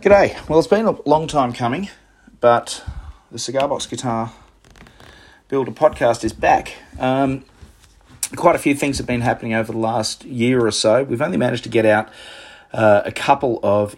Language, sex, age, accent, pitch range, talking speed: English, male, 40-59, Australian, 105-135 Hz, 175 wpm